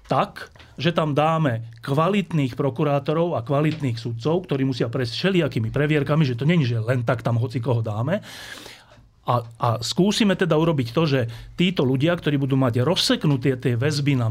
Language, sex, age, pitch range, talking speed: Slovak, male, 40-59, 120-160 Hz, 170 wpm